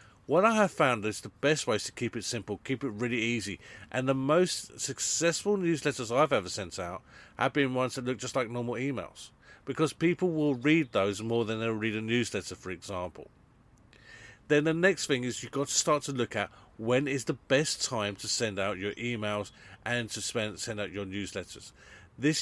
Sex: male